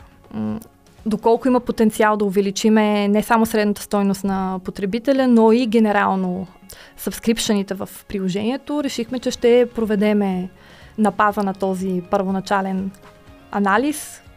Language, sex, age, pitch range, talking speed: Bulgarian, female, 20-39, 205-240 Hz, 110 wpm